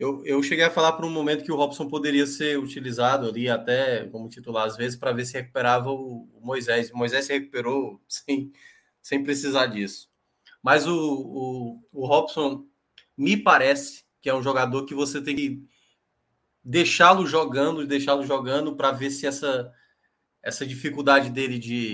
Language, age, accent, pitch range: Portuguese, 20-39, Brazilian, 135-185 Hz